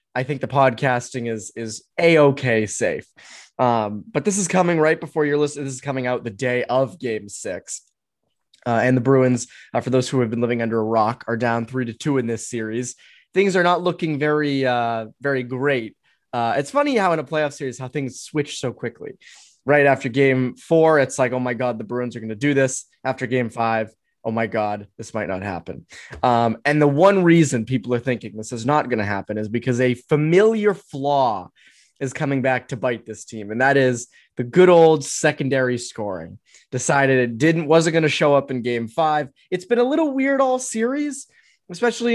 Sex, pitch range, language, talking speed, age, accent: male, 120-155 Hz, English, 210 wpm, 20-39, American